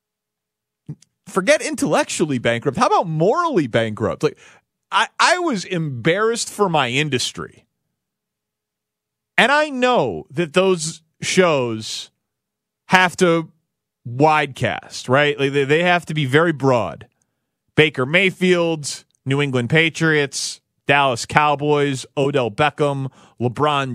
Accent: American